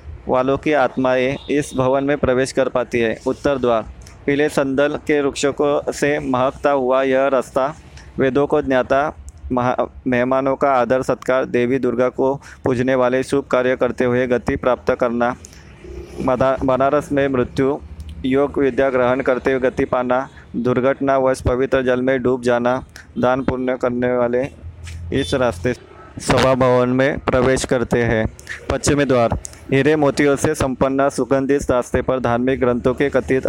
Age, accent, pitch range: 20-39, native, 125-135 Hz